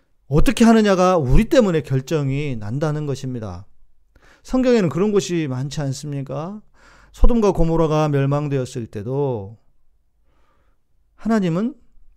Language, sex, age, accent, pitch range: Korean, male, 40-59, native, 145-230 Hz